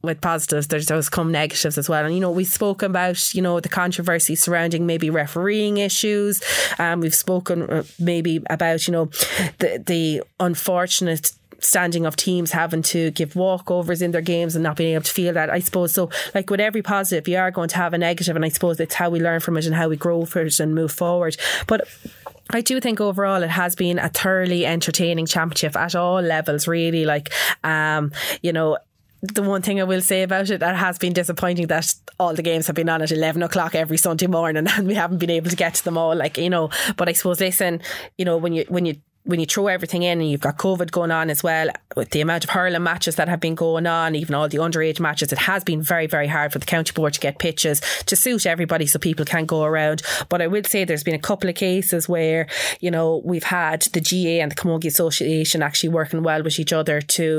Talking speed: 240 wpm